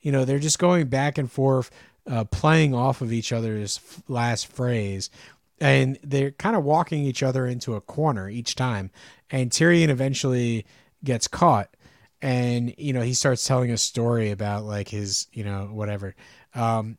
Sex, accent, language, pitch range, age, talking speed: male, American, English, 115-135 Hz, 30-49, 175 wpm